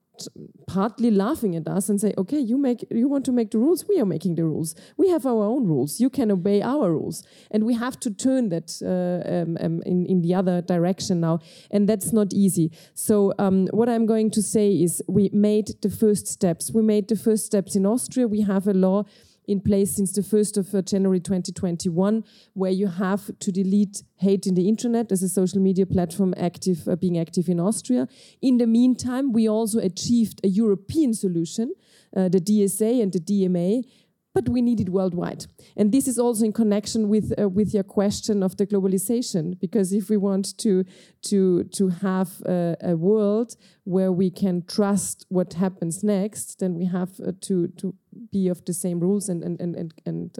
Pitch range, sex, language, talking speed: 185-215 Hz, female, English, 200 wpm